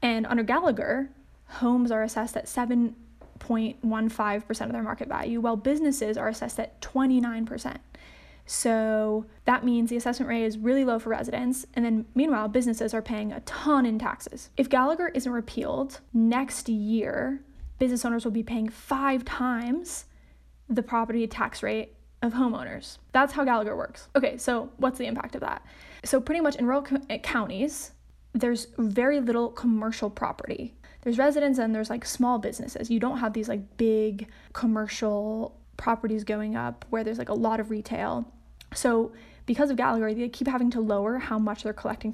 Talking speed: 165 wpm